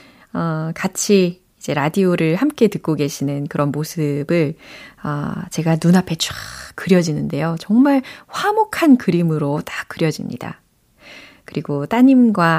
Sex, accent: female, native